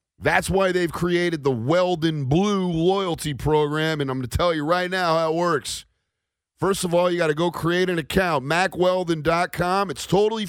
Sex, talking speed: male, 190 wpm